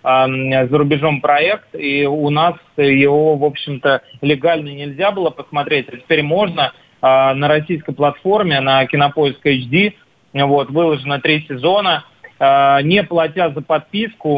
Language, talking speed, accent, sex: Russian, 130 wpm, native, male